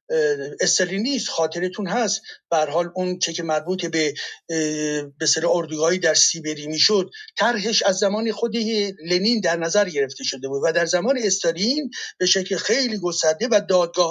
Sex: male